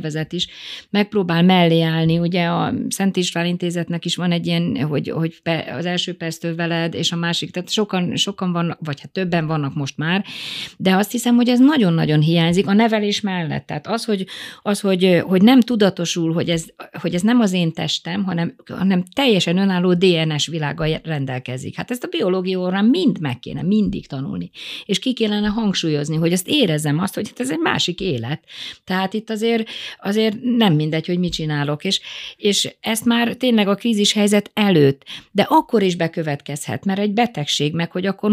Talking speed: 185 wpm